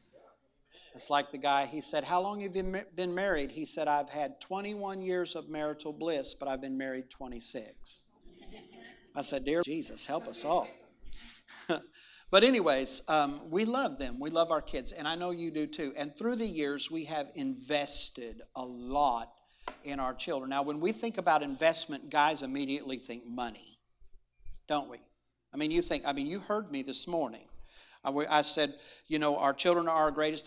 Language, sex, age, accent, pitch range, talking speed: English, male, 50-69, American, 135-165 Hz, 175 wpm